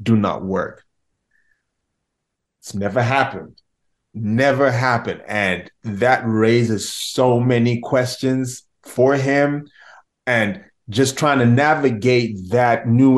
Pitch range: 105-130 Hz